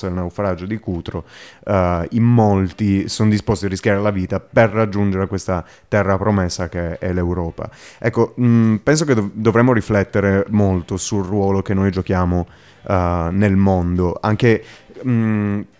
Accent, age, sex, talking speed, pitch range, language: native, 30-49, male, 150 wpm, 95-115 Hz, Italian